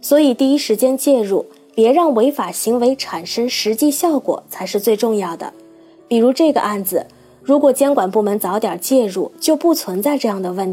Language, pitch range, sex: Chinese, 200-280 Hz, female